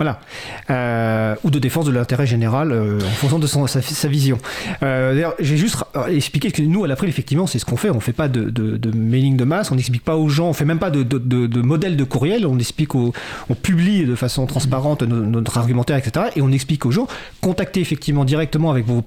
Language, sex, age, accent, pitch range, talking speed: French, male, 40-59, French, 125-160 Hz, 250 wpm